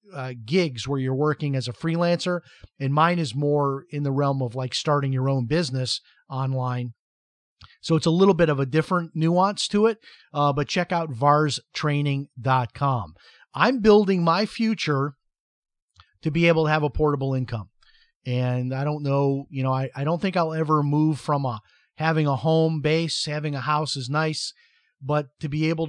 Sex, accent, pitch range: male, American, 135-165 Hz